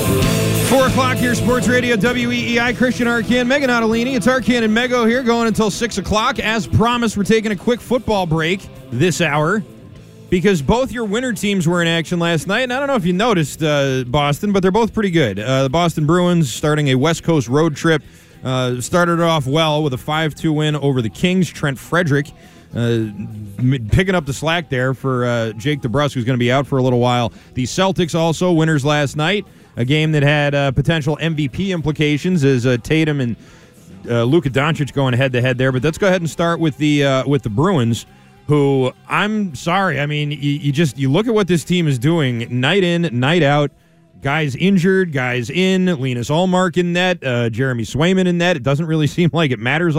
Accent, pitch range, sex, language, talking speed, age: American, 130-180 Hz, male, English, 210 wpm, 20-39